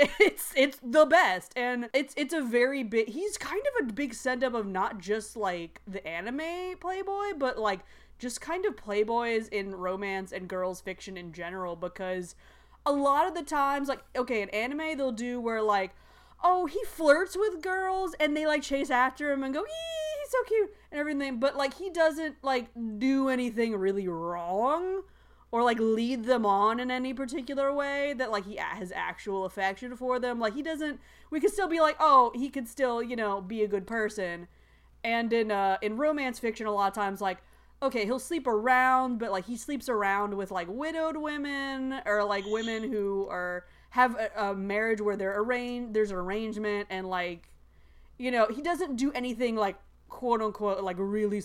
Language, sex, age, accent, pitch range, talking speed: English, female, 20-39, American, 205-285 Hz, 190 wpm